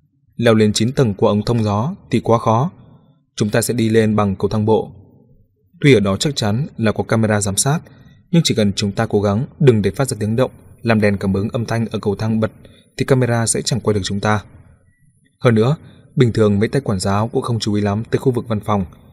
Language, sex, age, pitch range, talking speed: Vietnamese, male, 20-39, 105-130 Hz, 250 wpm